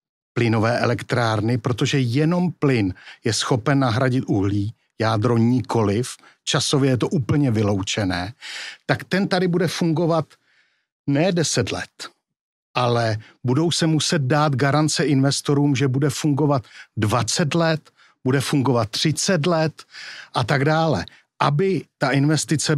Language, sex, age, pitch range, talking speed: Czech, male, 60-79, 120-160 Hz, 120 wpm